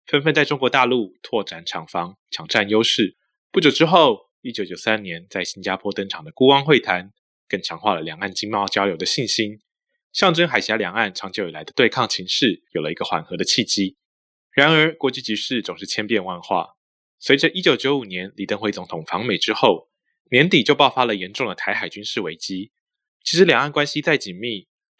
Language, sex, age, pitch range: Chinese, male, 20-39, 100-145 Hz